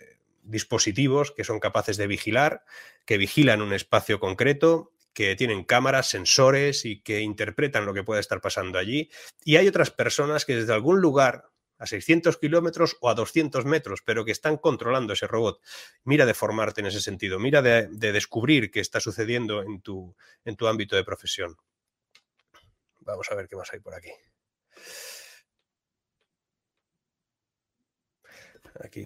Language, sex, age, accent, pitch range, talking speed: Spanish, male, 30-49, Spanish, 100-130 Hz, 150 wpm